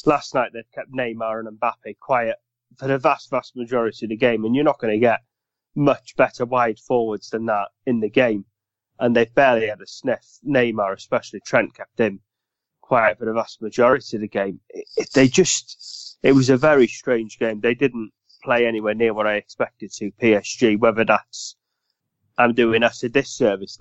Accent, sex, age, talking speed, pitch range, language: British, male, 30-49, 190 wpm, 110-125 Hz, English